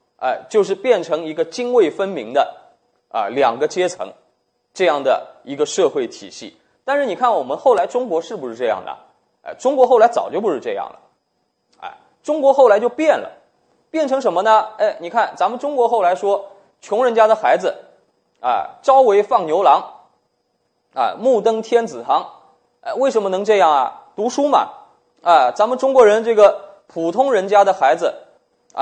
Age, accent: 20-39, native